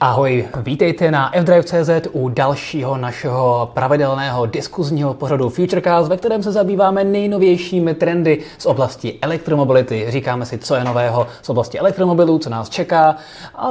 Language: Czech